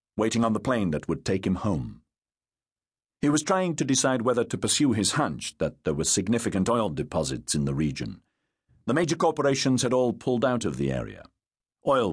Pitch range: 95-130 Hz